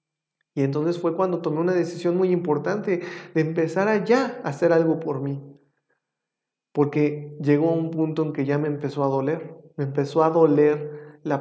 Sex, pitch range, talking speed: male, 155-180 Hz, 180 wpm